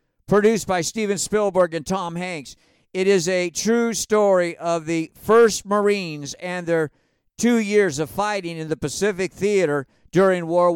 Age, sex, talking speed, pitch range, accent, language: 50-69, male, 155 wpm, 165-210 Hz, American, English